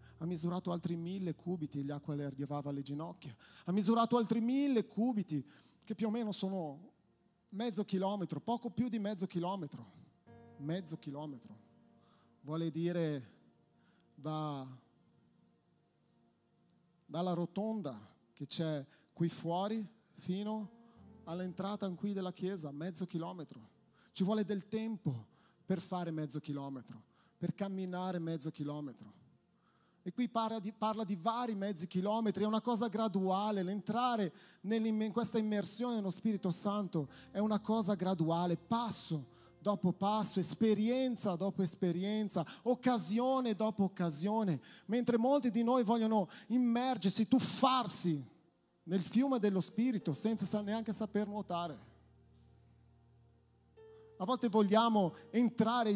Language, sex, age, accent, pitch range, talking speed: Italian, male, 30-49, native, 170-220 Hz, 115 wpm